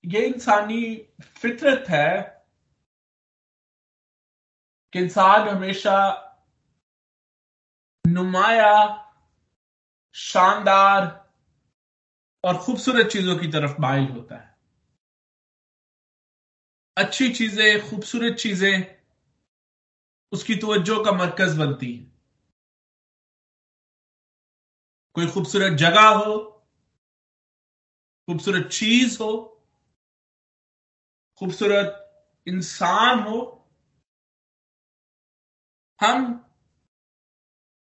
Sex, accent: male, native